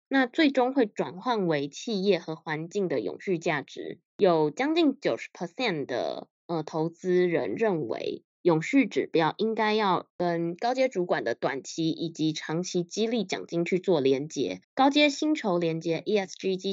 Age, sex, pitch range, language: 20-39, female, 165-220 Hz, Chinese